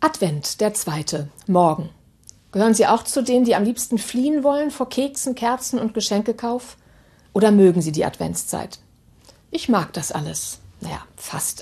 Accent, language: German, German